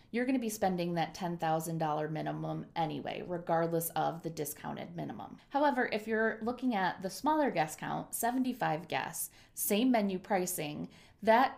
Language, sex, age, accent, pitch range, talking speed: English, female, 20-39, American, 165-215 Hz, 160 wpm